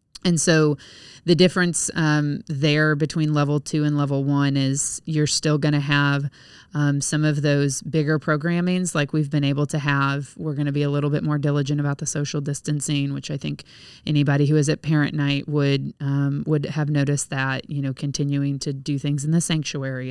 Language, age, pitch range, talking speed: English, 20-39, 140-155 Hz, 195 wpm